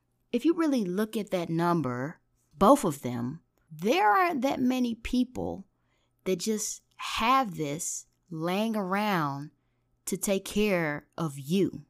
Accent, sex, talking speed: American, female, 130 wpm